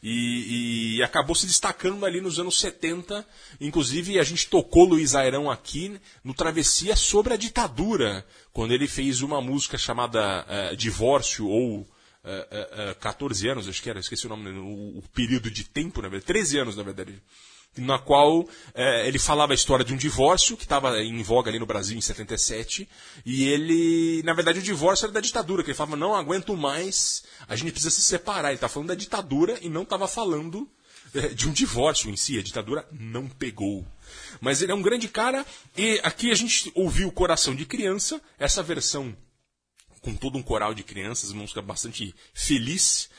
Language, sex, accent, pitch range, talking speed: Portuguese, male, Brazilian, 115-180 Hz, 180 wpm